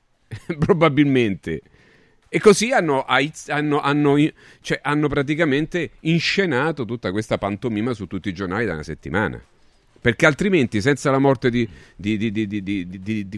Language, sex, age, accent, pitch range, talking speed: Italian, male, 40-59, native, 100-145 Hz, 115 wpm